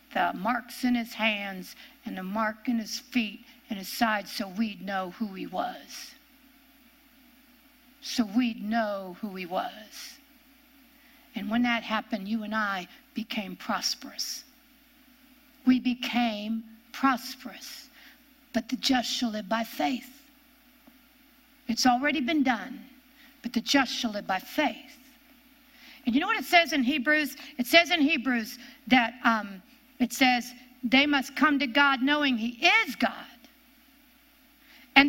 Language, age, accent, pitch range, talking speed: English, 60-79, American, 245-290 Hz, 140 wpm